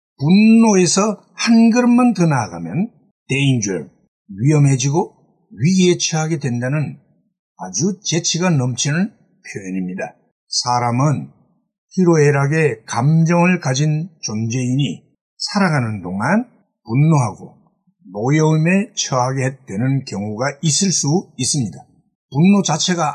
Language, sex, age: Korean, male, 60-79